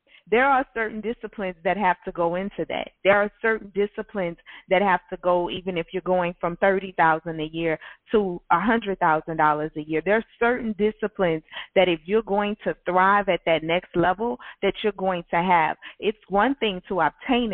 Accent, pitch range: American, 180-230 Hz